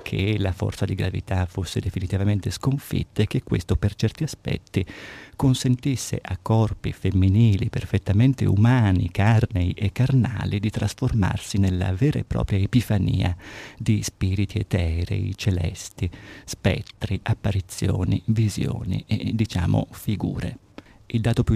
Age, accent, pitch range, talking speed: 50-69, native, 100-120 Hz, 120 wpm